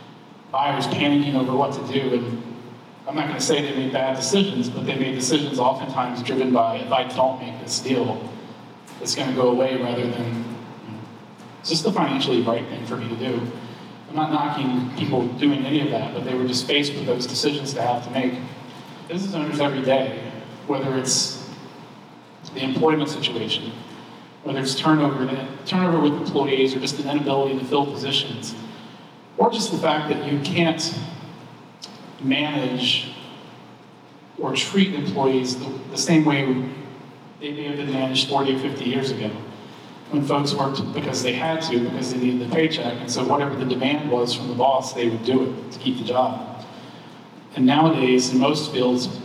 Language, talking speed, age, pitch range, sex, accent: English, 185 wpm, 30-49, 125-150 Hz, male, American